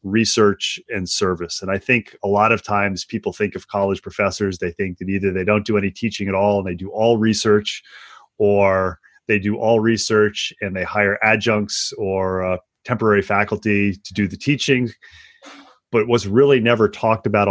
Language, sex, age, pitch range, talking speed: English, male, 30-49, 100-115 Hz, 185 wpm